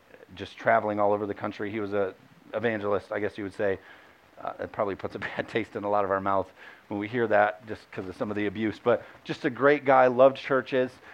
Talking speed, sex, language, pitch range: 250 wpm, male, English, 115-145 Hz